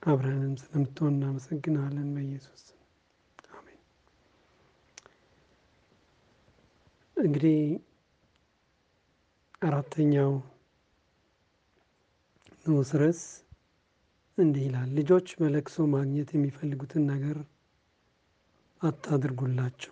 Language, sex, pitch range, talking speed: Amharic, male, 140-165 Hz, 50 wpm